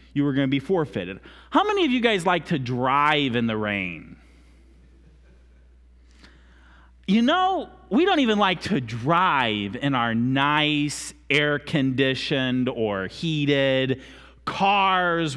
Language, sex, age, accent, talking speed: English, male, 30-49, American, 125 wpm